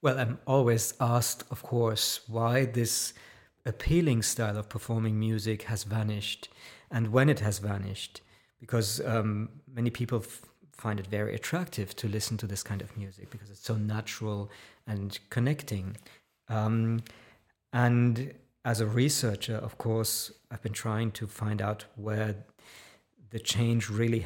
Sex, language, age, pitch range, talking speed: male, English, 50-69, 110-125 Hz, 145 wpm